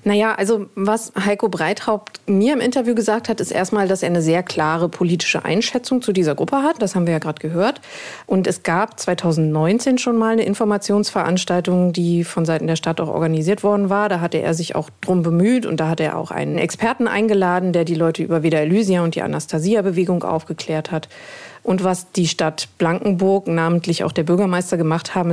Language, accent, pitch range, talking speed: German, German, 165-200 Hz, 195 wpm